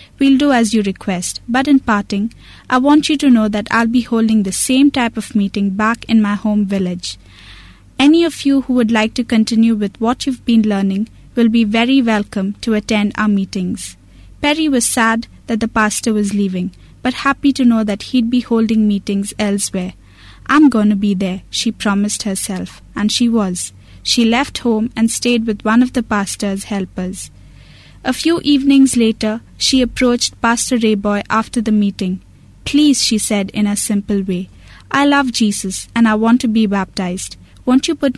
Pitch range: 205-245 Hz